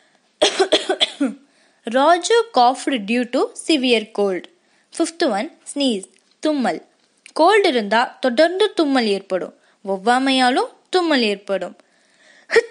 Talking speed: 85 wpm